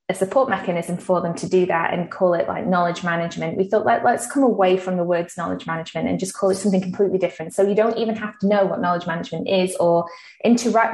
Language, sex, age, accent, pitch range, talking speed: English, female, 20-39, British, 175-200 Hz, 245 wpm